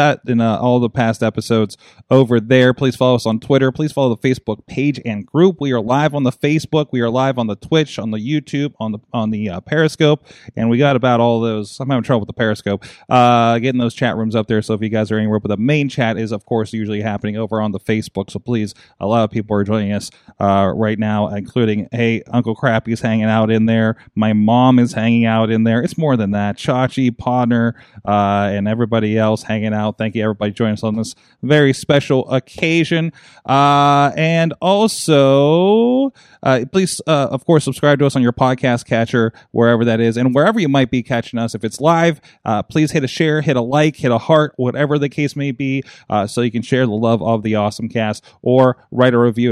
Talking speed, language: 230 wpm, English